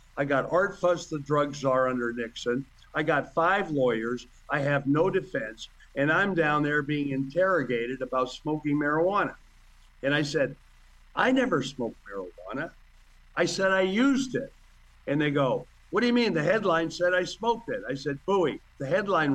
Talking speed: 175 wpm